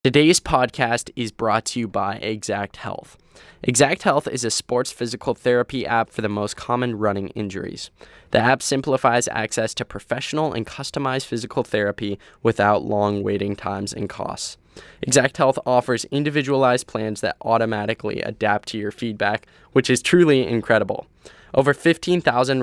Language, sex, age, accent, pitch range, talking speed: English, male, 10-29, American, 105-125 Hz, 150 wpm